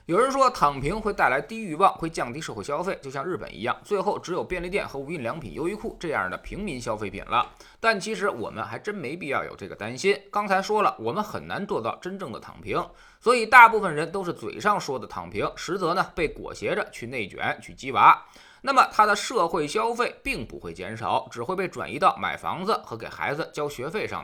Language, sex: Chinese, male